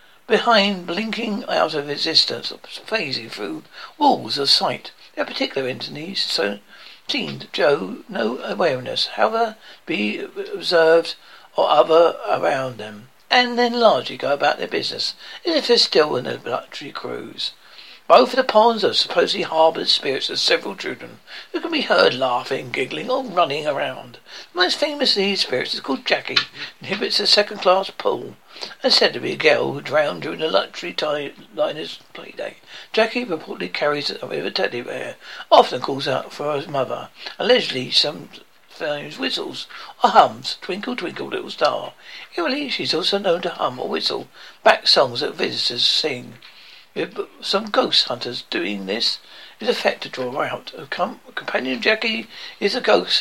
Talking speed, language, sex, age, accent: 160 wpm, English, male, 60-79, British